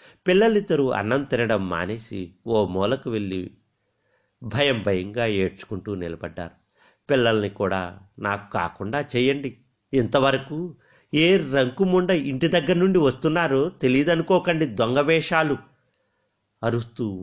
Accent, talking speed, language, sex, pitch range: native, 90 wpm, Telugu, male, 100-160 Hz